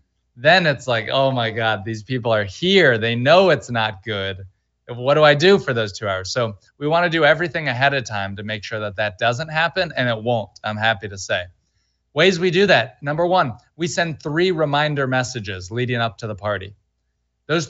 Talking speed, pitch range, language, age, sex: 215 wpm, 110-150 Hz, English, 20-39, male